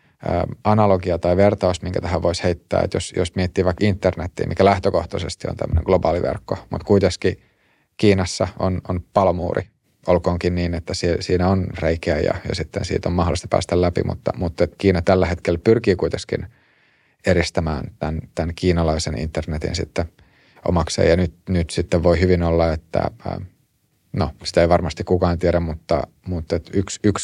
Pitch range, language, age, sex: 85-95 Hz, Finnish, 30-49, male